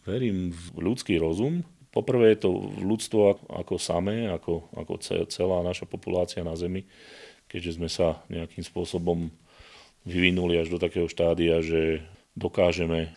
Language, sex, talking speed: Slovak, male, 135 wpm